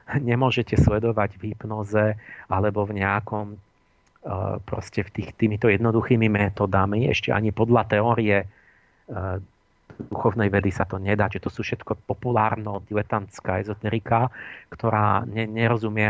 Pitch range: 100-115 Hz